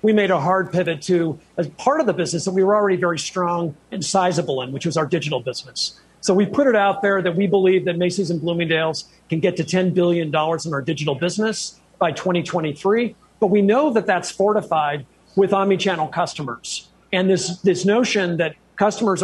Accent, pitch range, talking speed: American, 165-195 Hz, 200 wpm